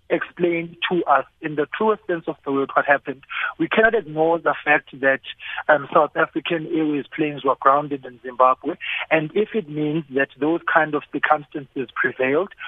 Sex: male